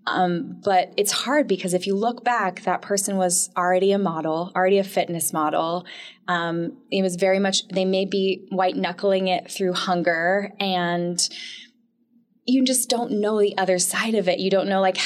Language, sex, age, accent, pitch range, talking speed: English, female, 20-39, American, 180-210 Hz, 185 wpm